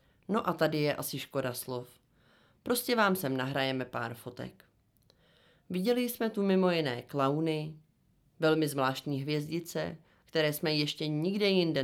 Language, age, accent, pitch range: Czech, 30-49, native, 135-180 Hz